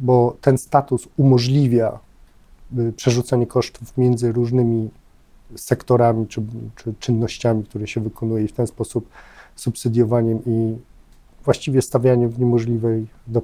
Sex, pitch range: male, 115-130 Hz